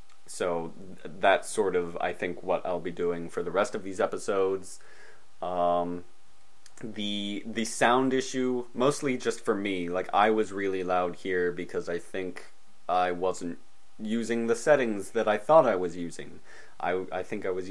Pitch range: 90-130 Hz